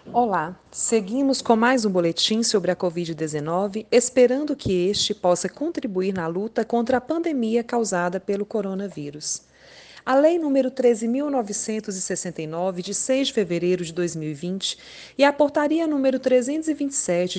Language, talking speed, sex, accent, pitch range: Portuguese, 130 wpm, female, Brazilian, 190-260 Hz